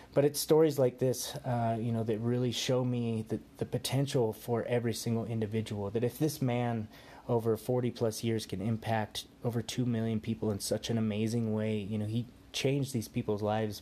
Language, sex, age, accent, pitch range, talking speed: English, male, 20-39, American, 105-135 Hz, 190 wpm